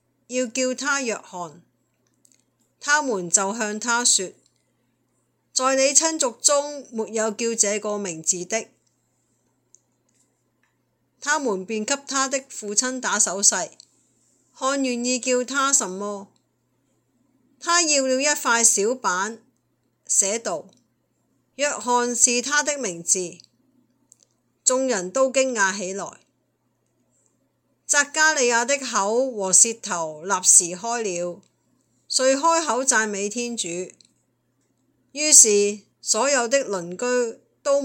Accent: native